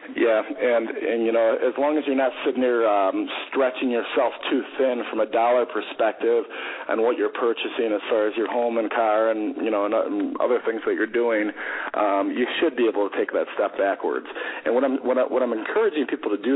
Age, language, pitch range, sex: 40-59, English, 120-175 Hz, male